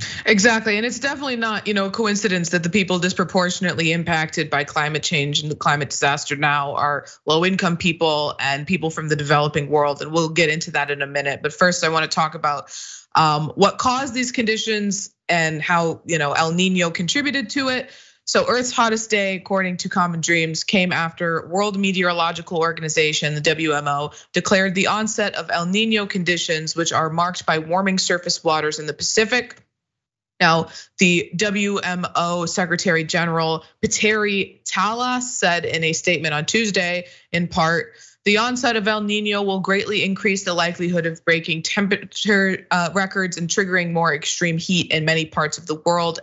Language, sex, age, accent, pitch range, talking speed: English, female, 20-39, American, 160-195 Hz, 170 wpm